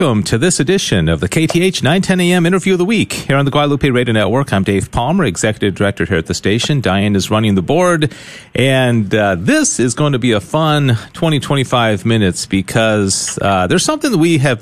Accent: American